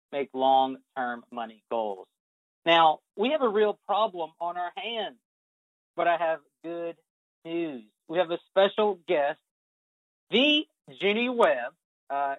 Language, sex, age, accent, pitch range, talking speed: English, male, 40-59, American, 140-185 Hz, 130 wpm